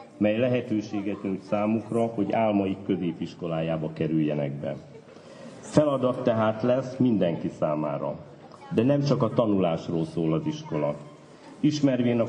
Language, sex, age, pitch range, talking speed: Hungarian, male, 60-79, 100-120 Hz, 115 wpm